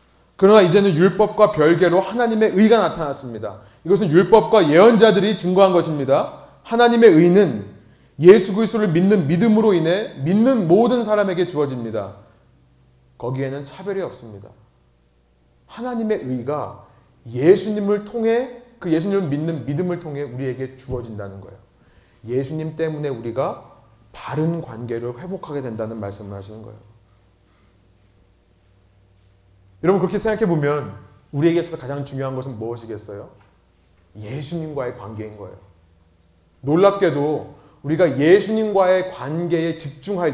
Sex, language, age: male, Korean, 30-49